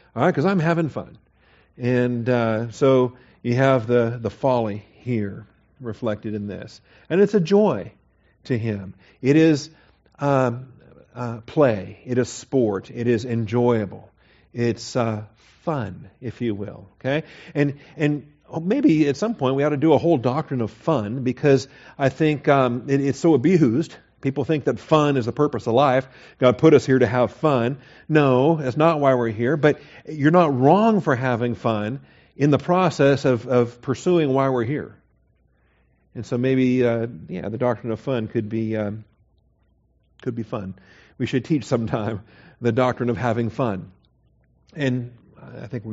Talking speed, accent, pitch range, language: 165 wpm, American, 115-145 Hz, English